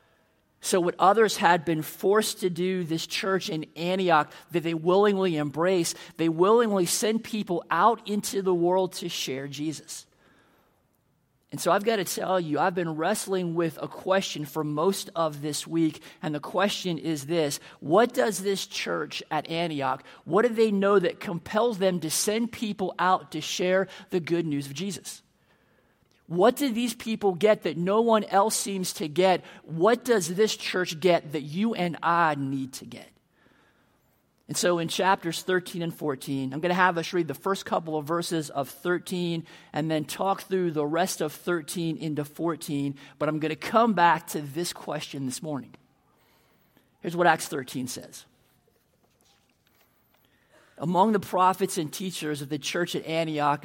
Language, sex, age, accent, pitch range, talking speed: English, male, 40-59, American, 155-195 Hz, 170 wpm